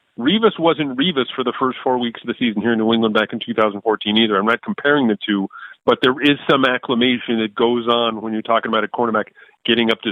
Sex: male